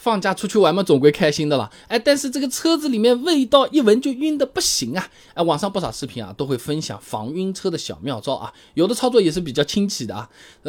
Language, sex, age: Chinese, male, 20-39